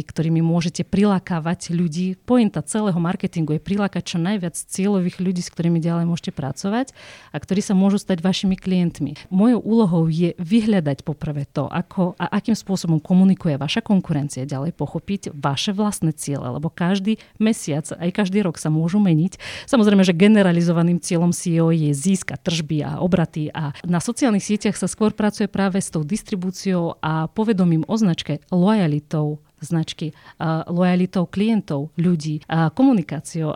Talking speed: 150 wpm